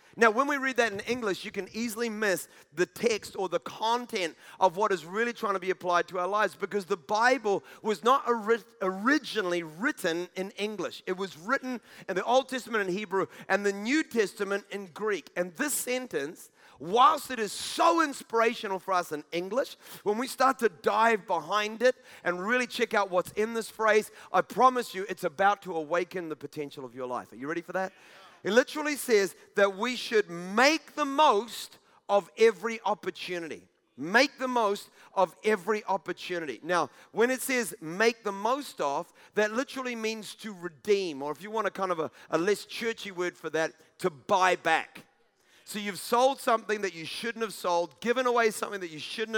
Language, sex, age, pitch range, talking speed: English, male, 30-49, 185-235 Hz, 190 wpm